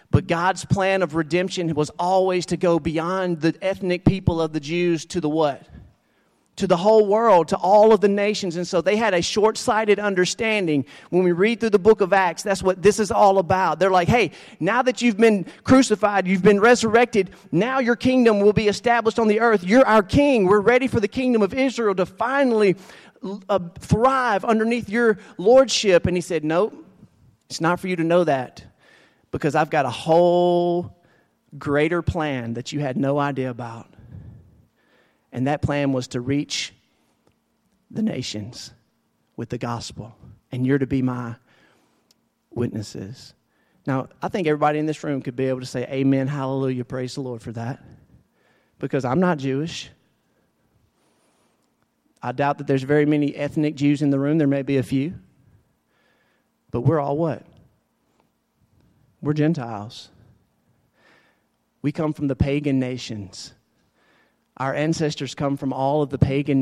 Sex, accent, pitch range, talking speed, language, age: male, American, 135-200 Hz, 165 wpm, English, 40-59